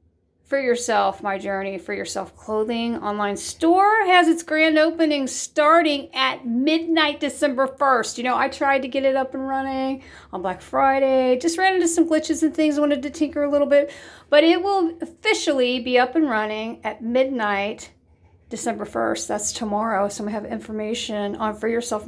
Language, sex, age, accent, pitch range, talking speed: English, female, 40-59, American, 225-305 Hz, 180 wpm